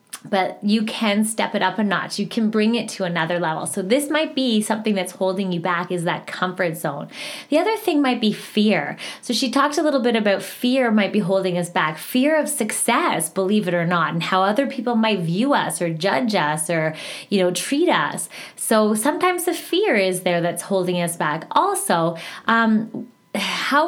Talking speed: 205 wpm